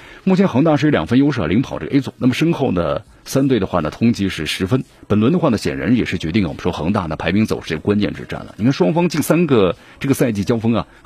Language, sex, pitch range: Chinese, male, 100-140 Hz